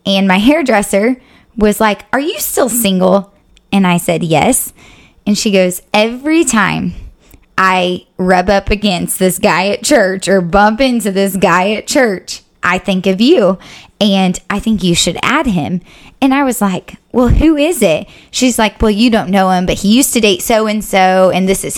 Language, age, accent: English, 20-39, American